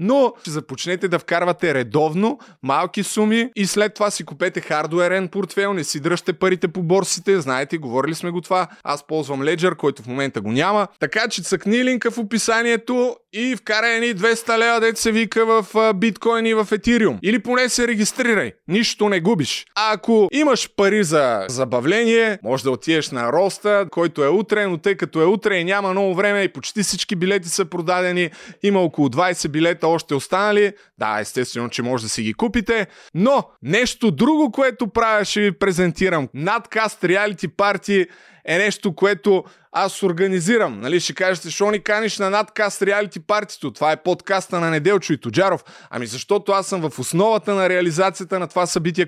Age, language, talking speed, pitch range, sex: 20-39, Bulgarian, 180 wpm, 175-215 Hz, male